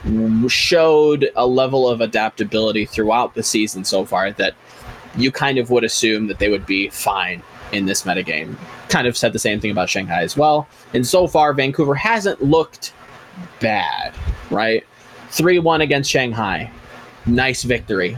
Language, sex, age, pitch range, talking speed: English, male, 20-39, 110-140 Hz, 155 wpm